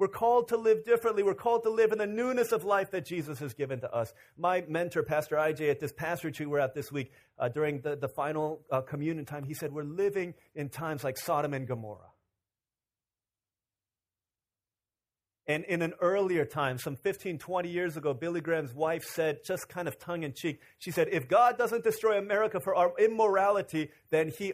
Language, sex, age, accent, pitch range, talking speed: English, male, 30-49, American, 145-210 Hz, 200 wpm